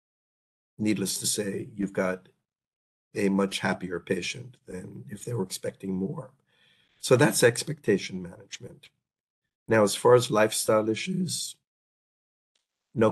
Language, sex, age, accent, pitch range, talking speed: English, male, 50-69, American, 95-110 Hz, 120 wpm